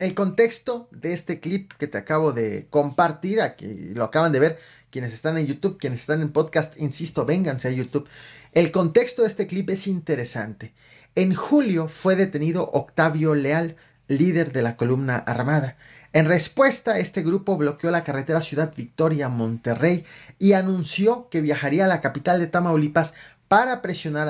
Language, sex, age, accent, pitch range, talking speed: Spanish, male, 30-49, Mexican, 140-190 Hz, 165 wpm